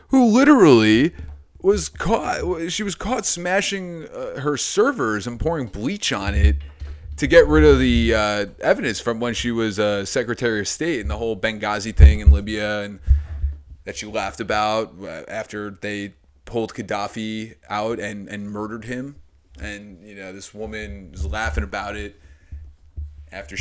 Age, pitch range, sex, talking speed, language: 30-49, 75-110 Hz, male, 160 wpm, English